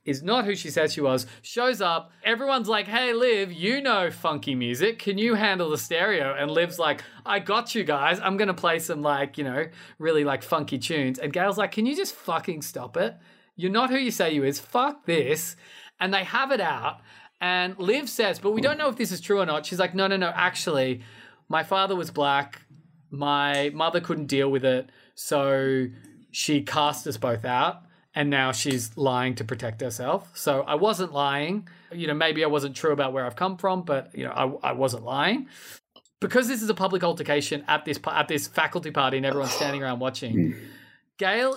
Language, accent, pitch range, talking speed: English, Australian, 145-225 Hz, 210 wpm